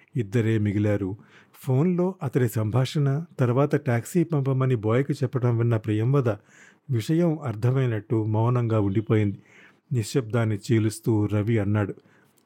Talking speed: 95 wpm